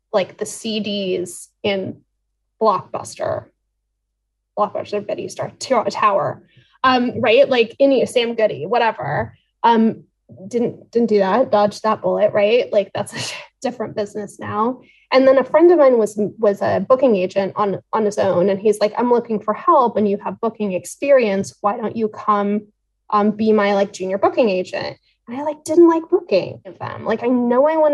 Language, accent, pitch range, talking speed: English, American, 200-245 Hz, 175 wpm